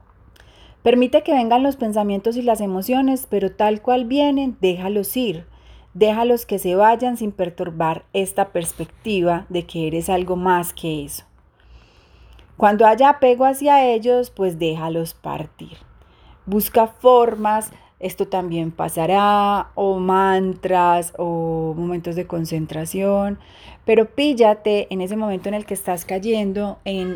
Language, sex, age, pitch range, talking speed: Spanish, female, 30-49, 175-215 Hz, 130 wpm